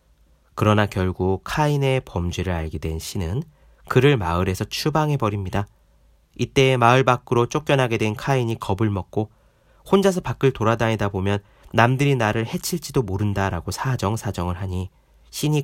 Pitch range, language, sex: 85-125 Hz, Korean, male